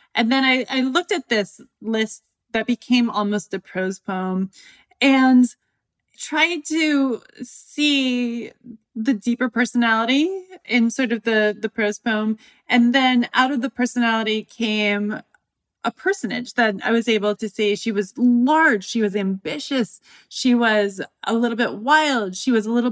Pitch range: 190-255 Hz